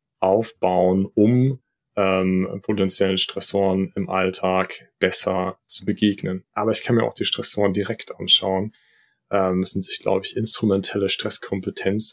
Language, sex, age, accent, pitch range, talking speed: German, male, 20-39, German, 95-115 Hz, 135 wpm